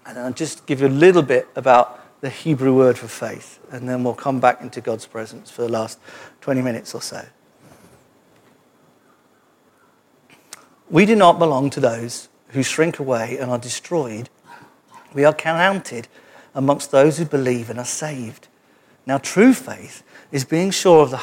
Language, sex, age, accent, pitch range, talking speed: English, male, 50-69, British, 125-160 Hz, 165 wpm